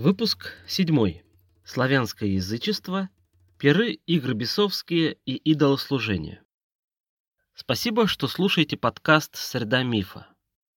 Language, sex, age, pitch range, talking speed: Russian, male, 30-49, 110-155 Hz, 90 wpm